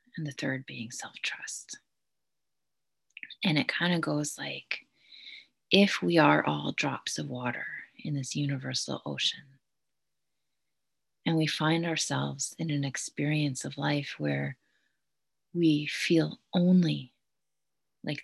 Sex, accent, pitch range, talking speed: female, American, 130-160 Hz, 120 wpm